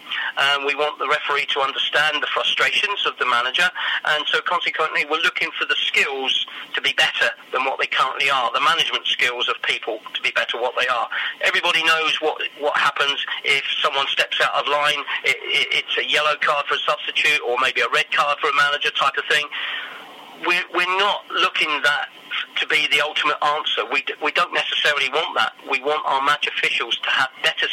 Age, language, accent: 40-59, English, British